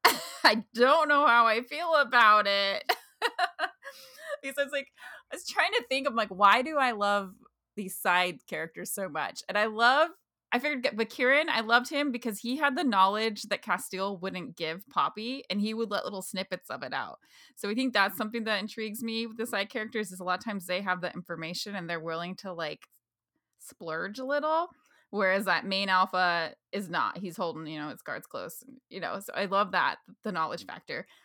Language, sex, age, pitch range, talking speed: English, female, 20-39, 185-260 Hz, 205 wpm